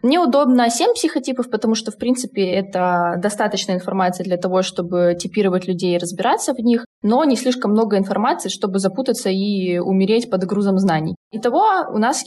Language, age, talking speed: Russian, 20-39, 165 wpm